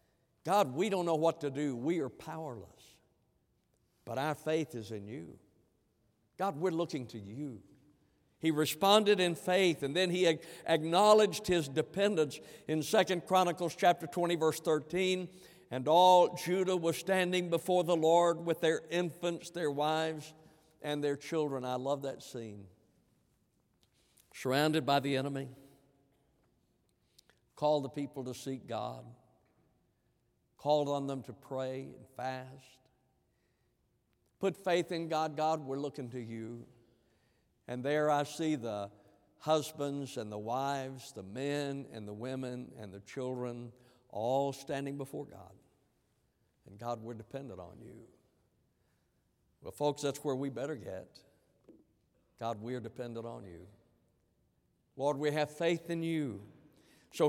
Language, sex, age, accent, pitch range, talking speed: English, male, 60-79, American, 125-165 Hz, 135 wpm